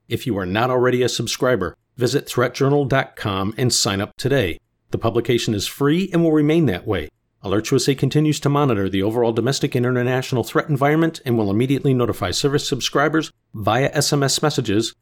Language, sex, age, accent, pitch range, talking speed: English, male, 50-69, American, 115-145 Hz, 170 wpm